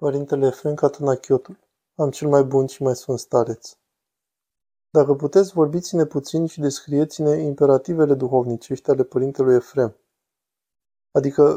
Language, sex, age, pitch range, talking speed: Romanian, male, 20-39, 125-145 Hz, 125 wpm